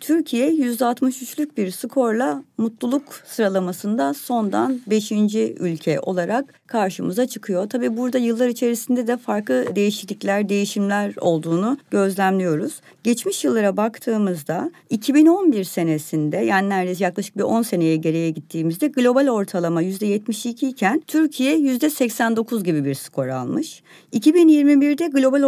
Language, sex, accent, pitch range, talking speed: Turkish, female, native, 195-260 Hz, 110 wpm